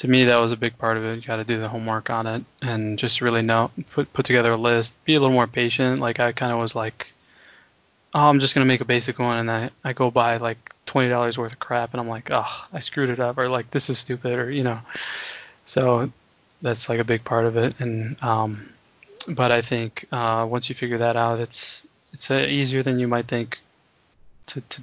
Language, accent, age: English, American, 20-39